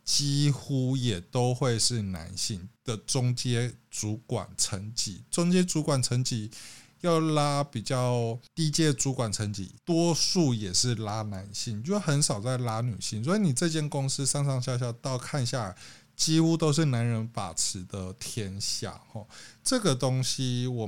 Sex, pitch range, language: male, 110-140 Hz, Chinese